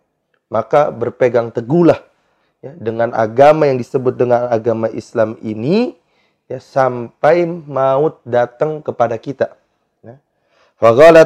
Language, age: Indonesian, 30-49